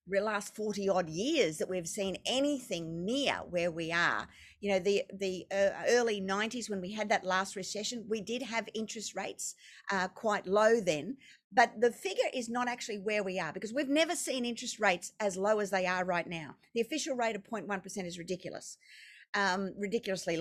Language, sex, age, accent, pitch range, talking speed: English, female, 50-69, Australian, 190-245 Hz, 190 wpm